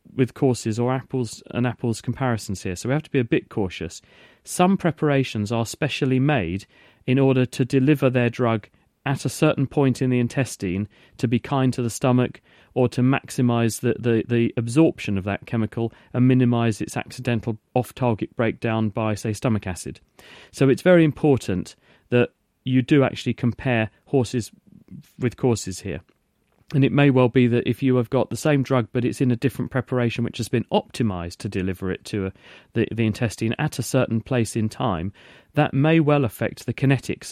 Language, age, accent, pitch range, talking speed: English, 40-59, British, 110-135 Hz, 185 wpm